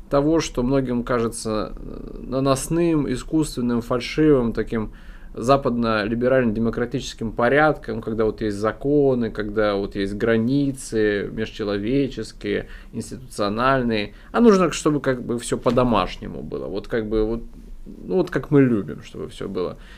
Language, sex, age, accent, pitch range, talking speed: Russian, male, 20-39, native, 110-150 Hz, 130 wpm